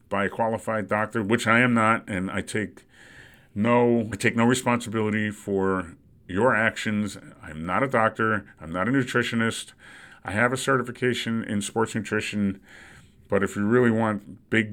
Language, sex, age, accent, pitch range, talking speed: English, male, 40-59, American, 100-120 Hz, 165 wpm